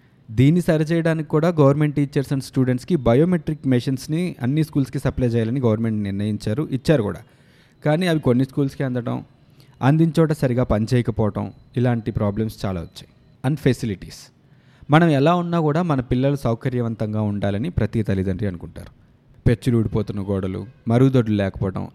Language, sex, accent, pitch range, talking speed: Telugu, male, native, 115-145 Hz, 130 wpm